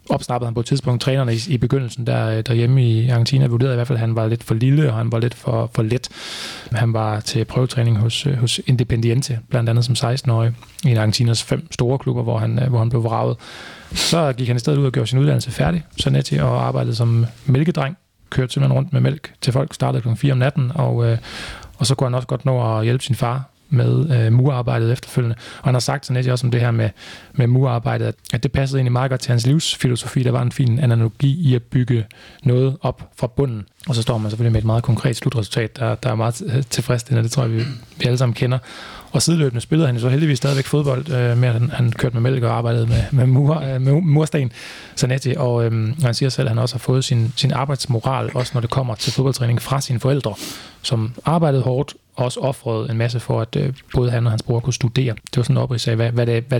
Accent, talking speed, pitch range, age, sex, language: native, 240 wpm, 115-135 Hz, 30-49, male, Danish